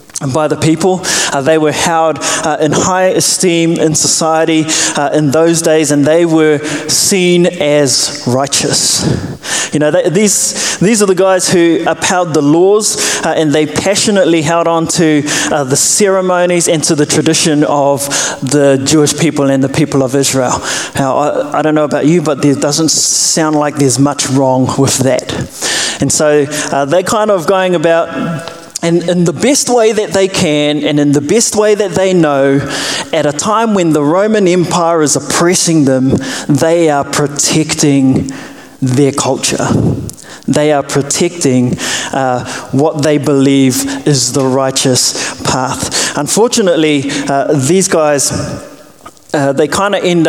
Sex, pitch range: male, 140-170 Hz